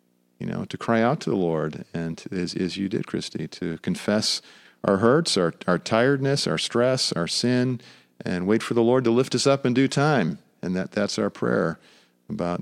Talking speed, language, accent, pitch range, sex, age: 200 wpm, English, American, 85-115 Hz, male, 40-59